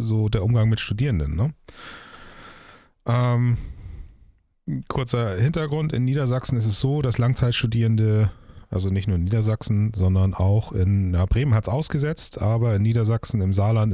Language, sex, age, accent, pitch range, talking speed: German, male, 30-49, German, 95-115 Hz, 140 wpm